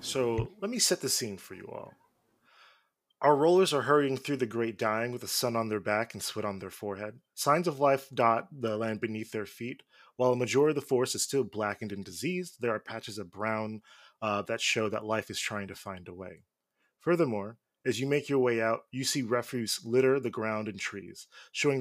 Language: English